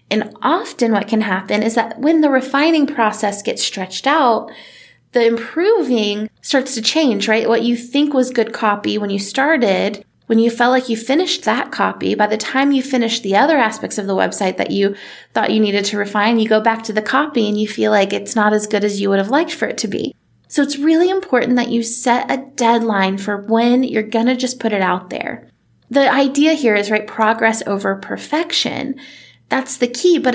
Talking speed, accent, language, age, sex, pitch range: 215 wpm, American, English, 20-39, female, 215-270 Hz